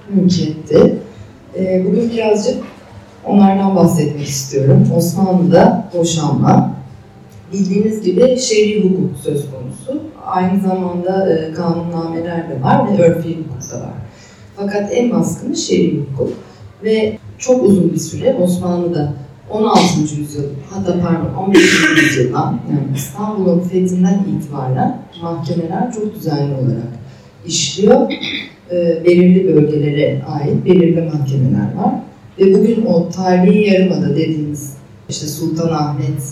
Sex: female